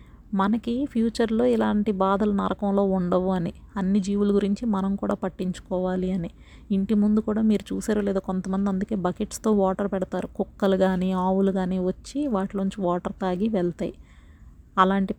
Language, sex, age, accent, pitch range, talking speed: Telugu, female, 30-49, native, 195-220 Hz, 140 wpm